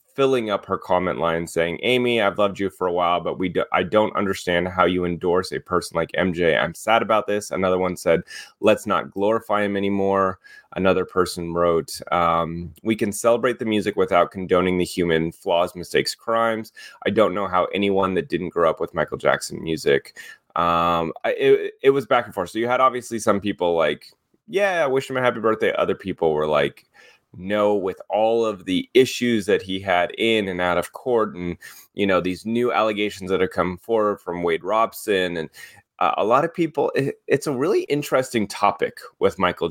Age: 30-49